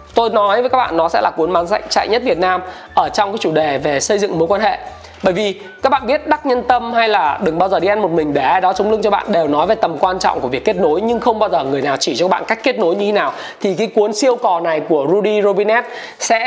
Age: 20-39